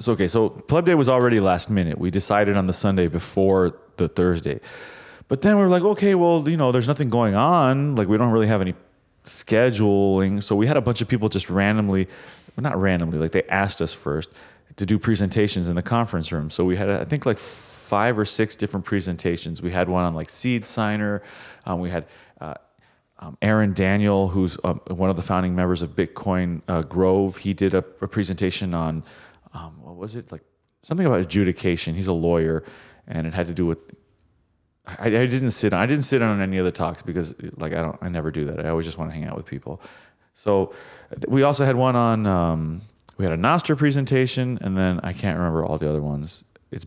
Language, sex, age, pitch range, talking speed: English, male, 30-49, 90-115 Hz, 220 wpm